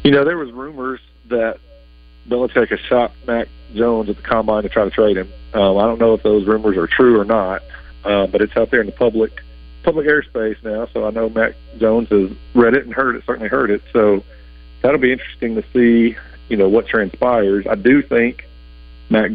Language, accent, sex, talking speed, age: English, American, male, 215 wpm, 40-59